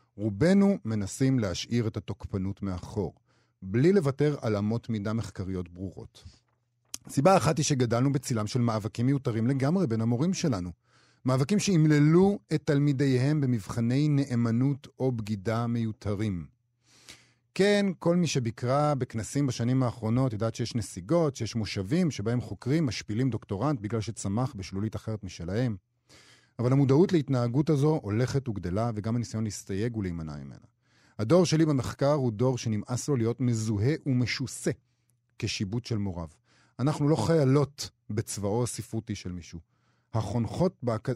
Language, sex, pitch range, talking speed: Hebrew, male, 110-140 Hz, 130 wpm